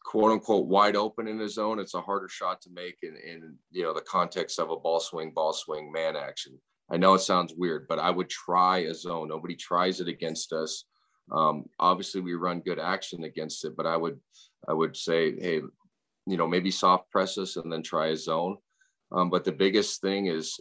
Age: 40-59